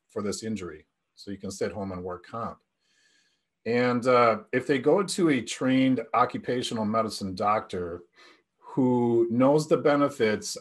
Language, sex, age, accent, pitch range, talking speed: English, male, 40-59, American, 100-135 Hz, 145 wpm